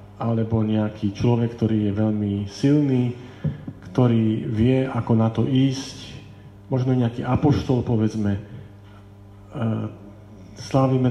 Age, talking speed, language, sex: 40-59, 105 wpm, Slovak, male